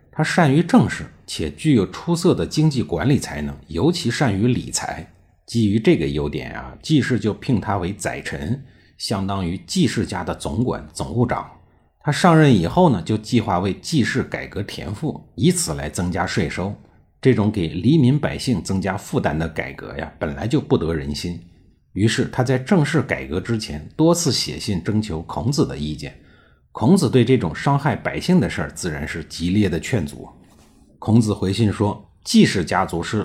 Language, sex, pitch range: Chinese, male, 85-130 Hz